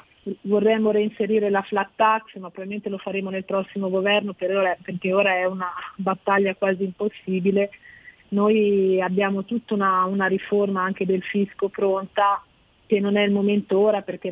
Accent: native